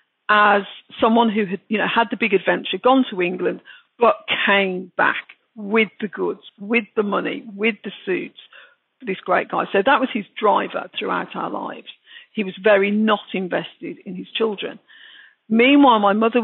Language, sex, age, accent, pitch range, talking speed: English, female, 50-69, British, 200-235 Hz, 170 wpm